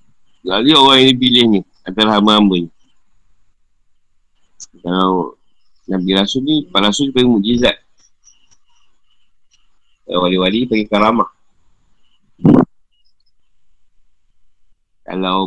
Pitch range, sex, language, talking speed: 95-120 Hz, male, Malay, 80 wpm